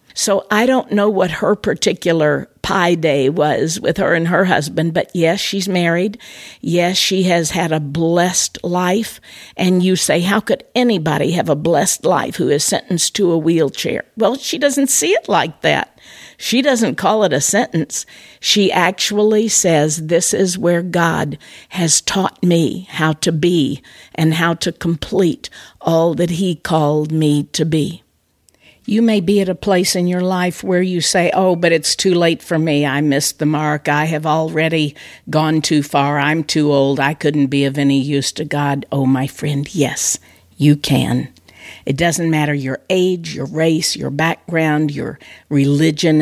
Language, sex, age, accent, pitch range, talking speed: English, female, 50-69, American, 150-180 Hz, 175 wpm